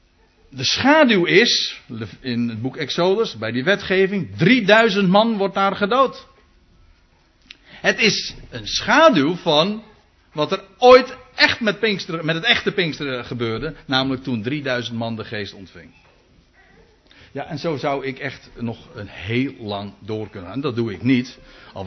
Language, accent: Dutch, Dutch